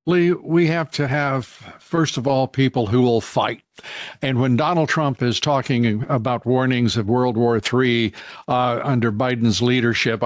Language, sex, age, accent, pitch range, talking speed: English, male, 50-69, American, 125-195 Hz, 165 wpm